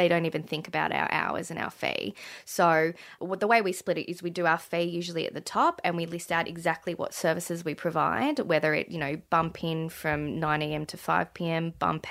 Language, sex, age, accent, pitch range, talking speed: English, female, 20-39, Australian, 165-185 Hz, 240 wpm